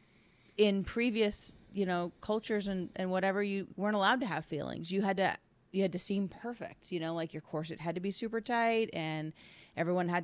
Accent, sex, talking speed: American, female, 205 wpm